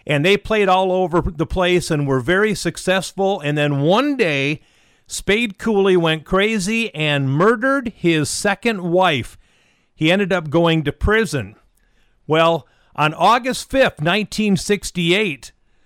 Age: 50-69